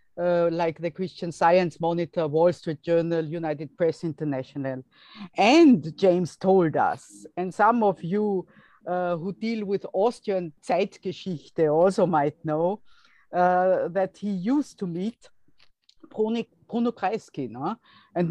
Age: 50-69